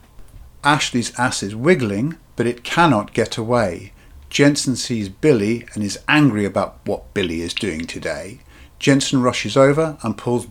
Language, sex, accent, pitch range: English, male, British, 100-130 Hz